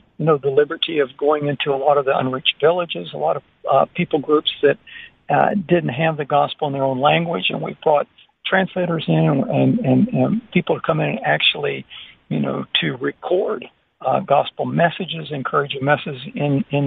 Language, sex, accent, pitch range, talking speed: English, male, American, 140-165 Hz, 190 wpm